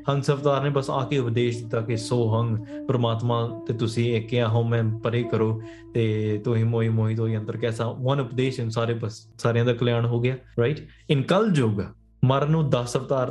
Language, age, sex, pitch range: English, 20-39, male, 120-145 Hz